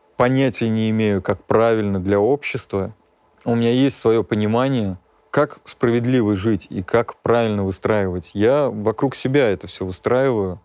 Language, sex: Russian, male